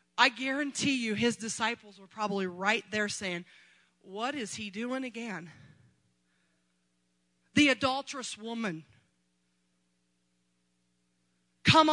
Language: English